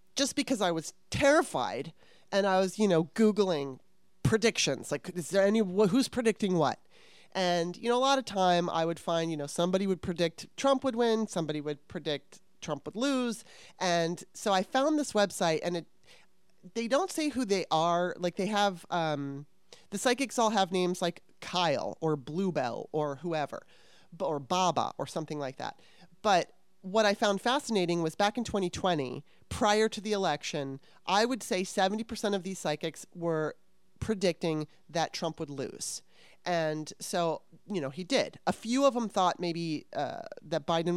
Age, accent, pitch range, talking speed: 30-49, American, 160-210 Hz, 175 wpm